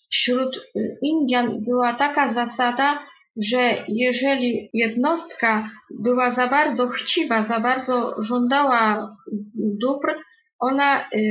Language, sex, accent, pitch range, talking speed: Polish, female, native, 230-270 Hz, 90 wpm